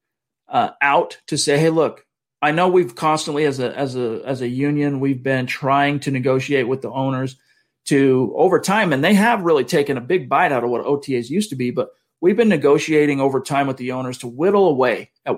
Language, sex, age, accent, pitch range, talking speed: English, male, 40-59, American, 130-155 Hz, 220 wpm